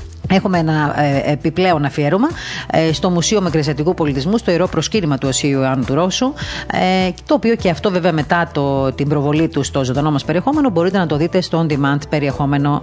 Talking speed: 190 wpm